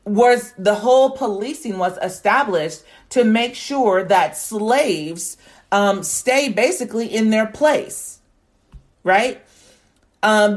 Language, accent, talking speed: English, American, 110 wpm